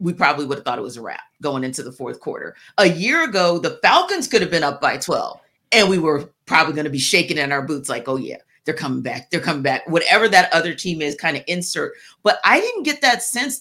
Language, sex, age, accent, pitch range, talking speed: English, female, 40-59, American, 150-230 Hz, 260 wpm